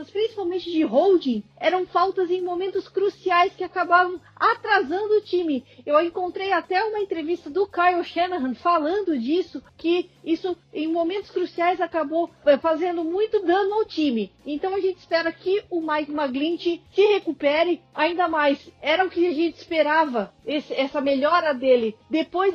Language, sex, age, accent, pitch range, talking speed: Portuguese, female, 40-59, Brazilian, 300-360 Hz, 150 wpm